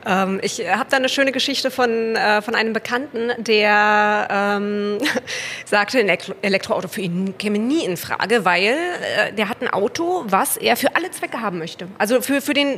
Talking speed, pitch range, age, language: 170 wpm, 210-275 Hz, 20-39, German